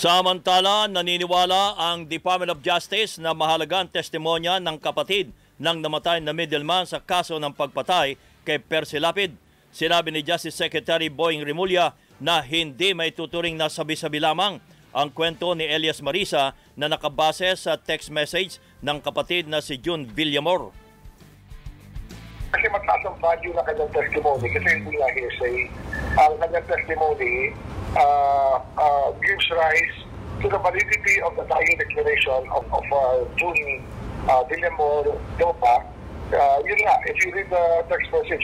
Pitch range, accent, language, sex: 150-180 Hz, Filipino, English, male